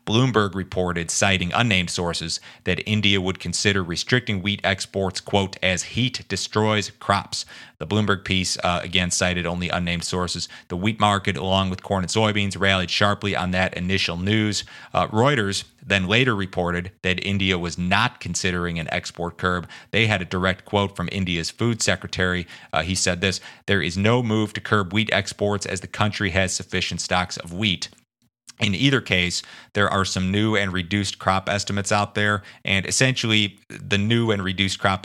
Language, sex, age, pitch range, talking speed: English, male, 30-49, 90-100 Hz, 175 wpm